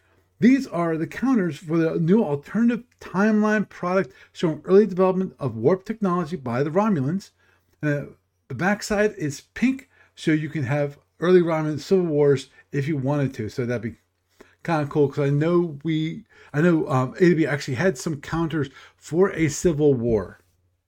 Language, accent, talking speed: English, American, 165 wpm